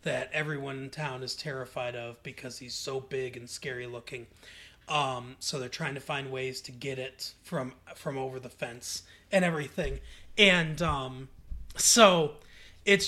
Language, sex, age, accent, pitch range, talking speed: English, male, 30-49, American, 140-175 Hz, 160 wpm